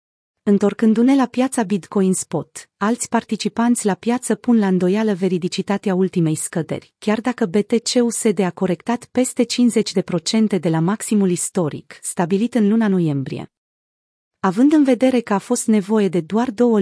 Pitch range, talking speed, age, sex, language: 180-230 Hz, 145 wpm, 30-49, female, Romanian